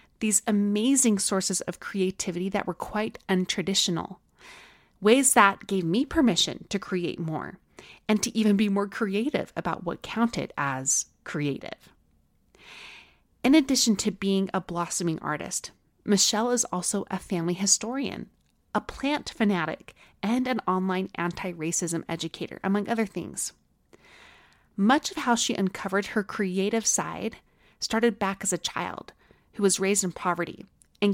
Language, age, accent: English, 30-49, American